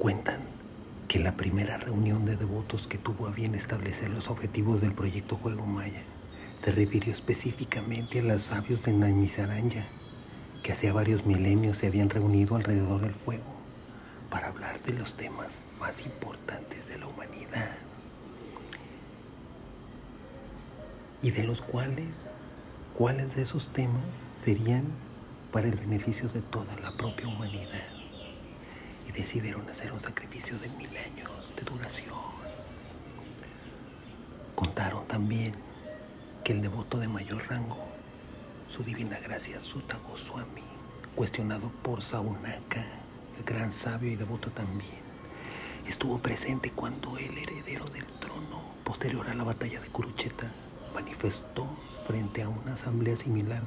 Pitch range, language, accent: 105-120 Hz, Spanish, Mexican